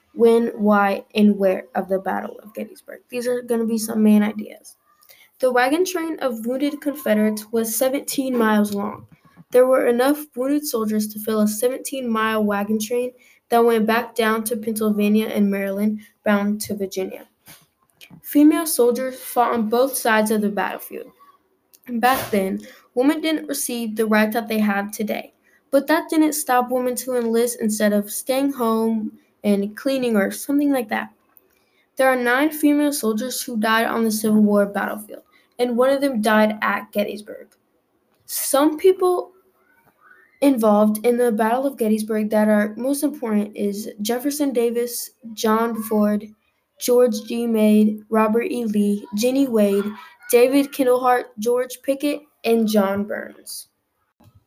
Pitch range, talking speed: 215-260 Hz, 150 wpm